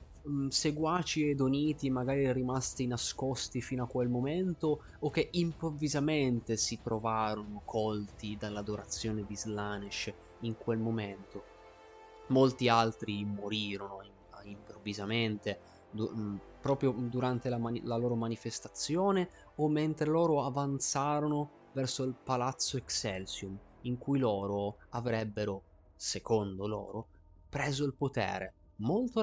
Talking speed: 105 wpm